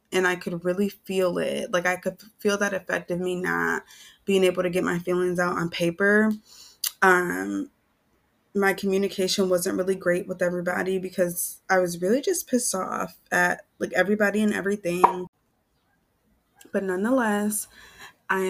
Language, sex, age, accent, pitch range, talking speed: English, female, 20-39, American, 175-200 Hz, 155 wpm